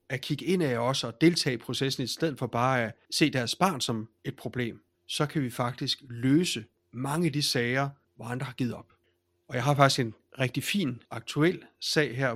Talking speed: 215 wpm